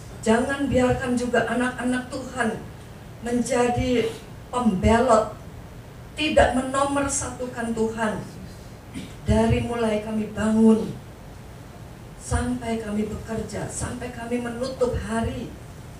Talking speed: 80 wpm